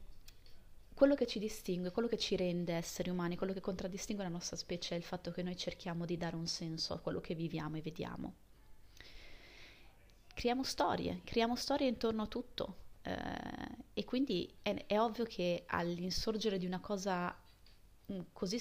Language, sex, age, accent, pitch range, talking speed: Italian, female, 20-39, native, 175-225 Hz, 160 wpm